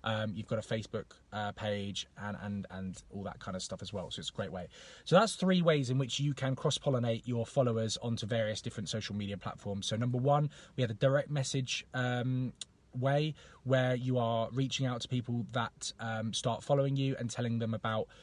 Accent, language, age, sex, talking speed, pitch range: British, English, 20-39, male, 210 wpm, 105-130 Hz